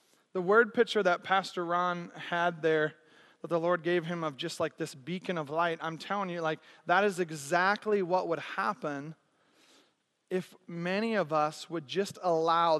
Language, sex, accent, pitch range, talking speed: English, male, American, 175-210 Hz, 175 wpm